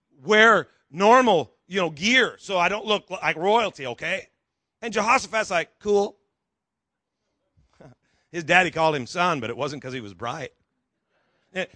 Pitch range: 185-250 Hz